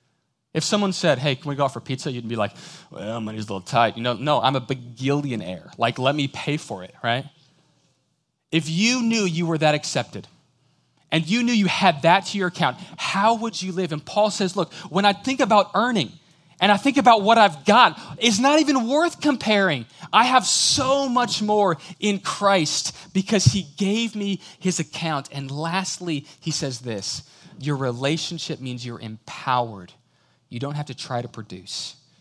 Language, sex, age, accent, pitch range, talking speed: English, male, 20-39, American, 120-180 Hz, 190 wpm